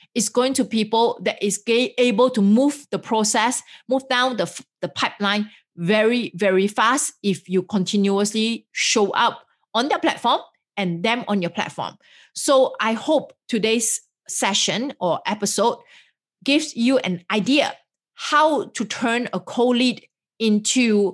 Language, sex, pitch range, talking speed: English, female, 200-260 Hz, 140 wpm